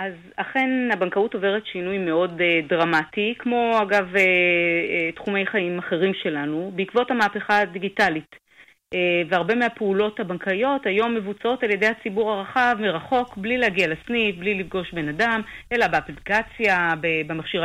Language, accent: Hebrew, native